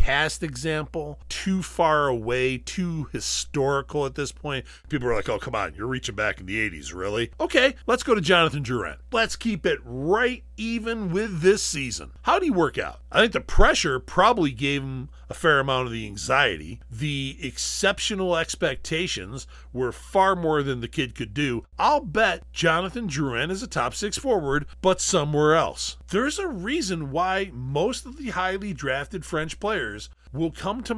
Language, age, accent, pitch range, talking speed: English, 40-59, American, 125-185 Hz, 175 wpm